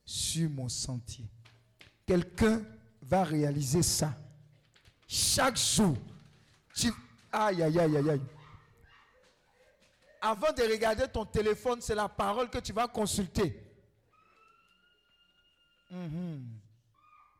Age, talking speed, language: 50-69, 95 wpm, French